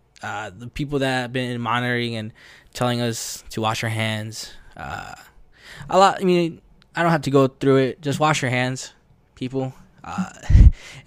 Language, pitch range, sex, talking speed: English, 110-125 Hz, male, 175 wpm